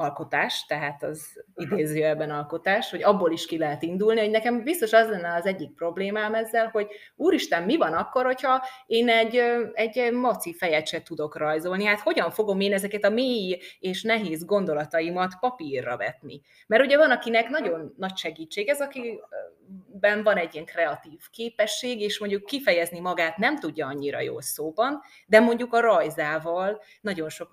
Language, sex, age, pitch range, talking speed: Hungarian, female, 30-49, 165-225 Hz, 165 wpm